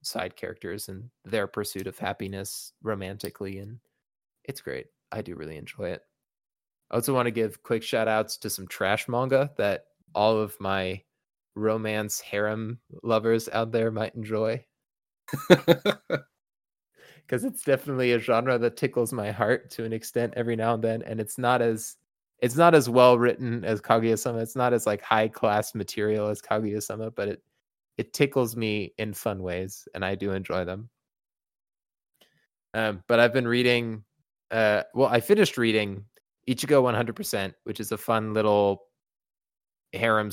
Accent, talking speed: American, 160 wpm